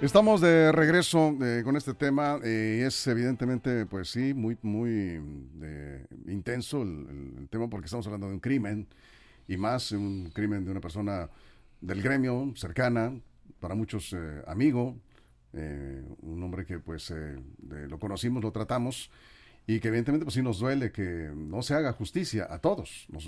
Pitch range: 100-140 Hz